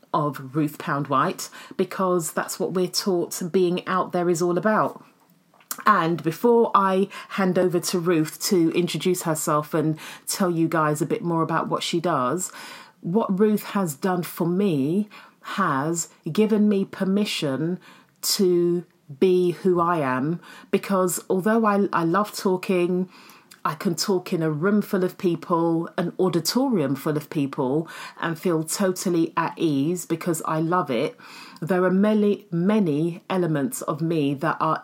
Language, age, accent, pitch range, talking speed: English, 30-49, British, 160-190 Hz, 155 wpm